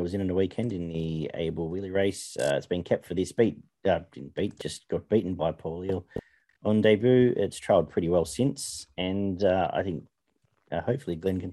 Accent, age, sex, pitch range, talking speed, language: Australian, 40-59, male, 85-105 Hz, 220 wpm, English